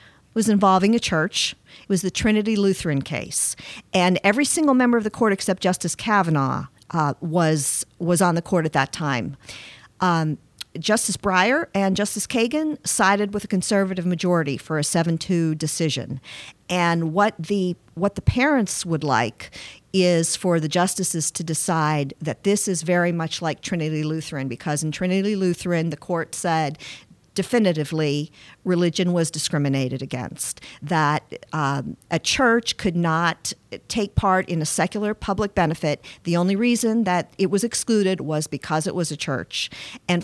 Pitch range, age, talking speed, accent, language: 155-200 Hz, 50-69, 160 wpm, American, English